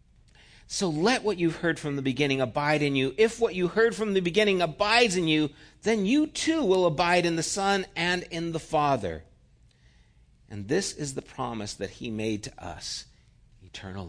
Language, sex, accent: English, male, American